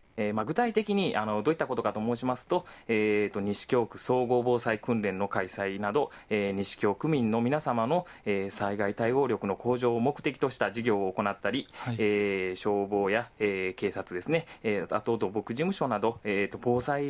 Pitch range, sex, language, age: 105-130 Hz, male, Japanese, 20-39